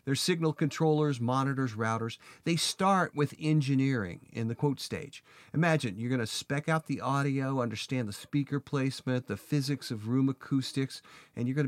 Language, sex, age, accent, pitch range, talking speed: English, male, 40-59, American, 115-145 Hz, 170 wpm